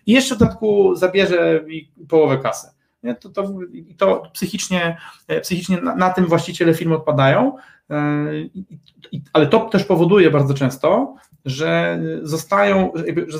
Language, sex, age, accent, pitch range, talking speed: Polish, male, 30-49, native, 150-190 Hz, 125 wpm